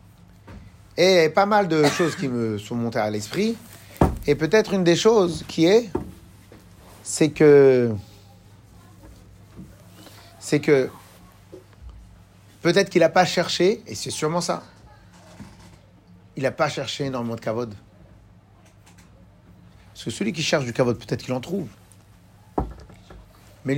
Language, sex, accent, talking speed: French, male, French, 125 wpm